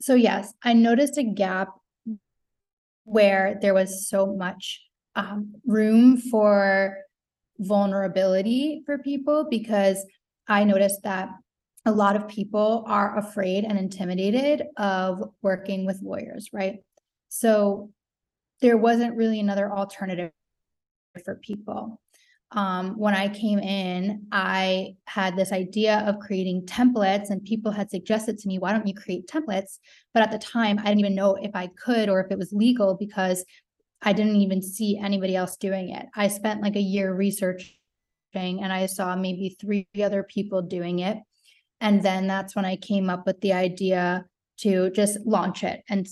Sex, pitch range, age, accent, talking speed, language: female, 190-210 Hz, 20-39, American, 155 wpm, English